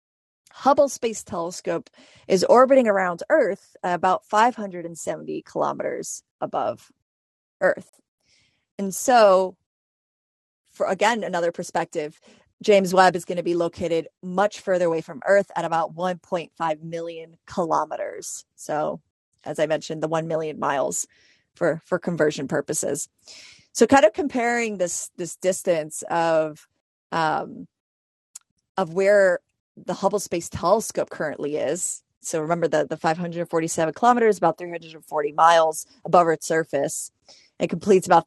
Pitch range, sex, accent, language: 165-195 Hz, female, American, English